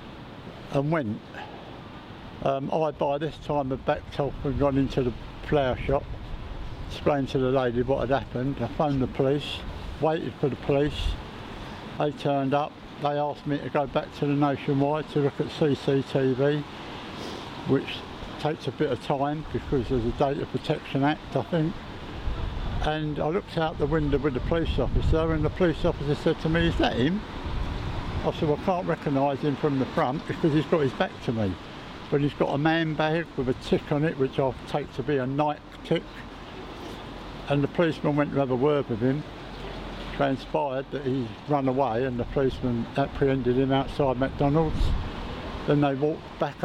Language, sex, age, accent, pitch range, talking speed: English, male, 60-79, British, 130-150 Hz, 185 wpm